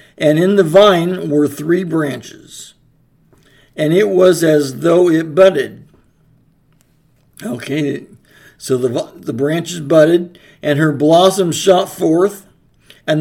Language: English